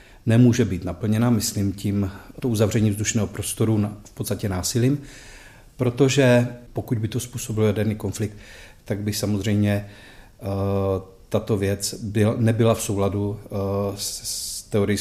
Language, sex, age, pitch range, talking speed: Czech, male, 40-59, 100-120 Hz, 130 wpm